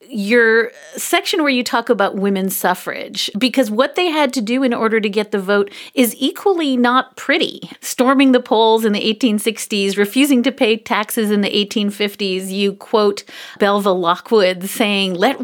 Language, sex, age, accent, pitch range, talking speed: English, female, 40-59, American, 195-245 Hz, 165 wpm